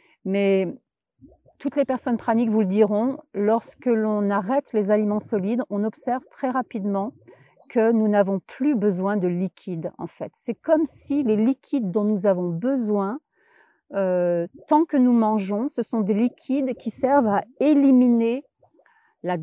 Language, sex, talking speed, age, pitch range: English, female, 155 wpm, 40-59, 190-250 Hz